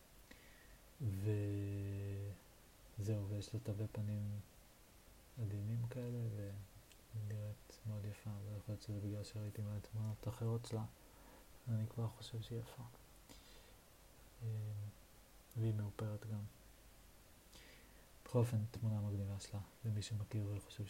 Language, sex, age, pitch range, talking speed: Hebrew, male, 30-49, 100-110 Hz, 100 wpm